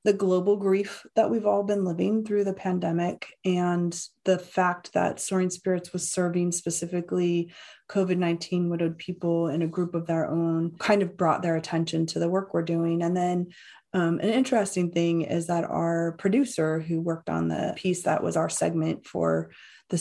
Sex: female